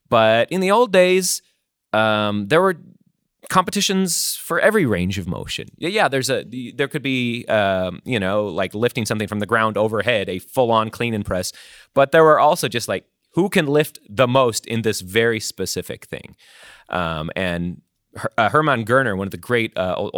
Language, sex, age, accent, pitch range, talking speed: English, male, 30-49, American, 100-150 Hz, 180 wpm